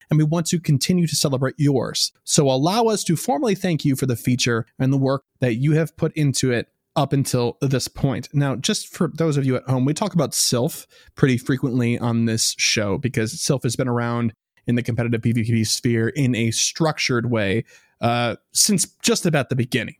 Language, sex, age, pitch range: English, male, 20-39, 120-170 Hz